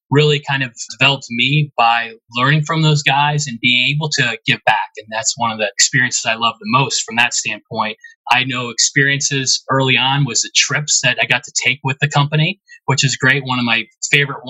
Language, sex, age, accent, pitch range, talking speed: English, male, 30-49, American, 125-155 Hz, 215 wpm